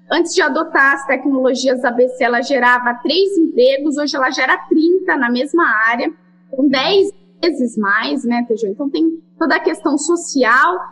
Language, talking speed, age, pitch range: Portuguese, 160 wpm, 20-39, 250-355 Hz